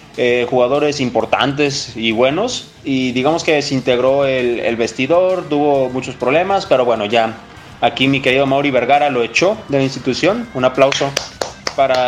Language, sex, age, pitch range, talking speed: Spanish, male, 20-39, 130-175 Hz, 155 wpm